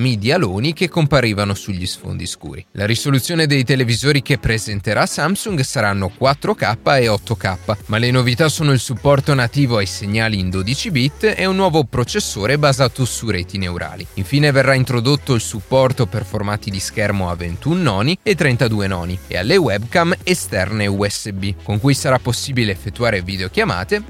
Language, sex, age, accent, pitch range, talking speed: Italian, male, 30-49, native, 95-140 Hz, 160 wpm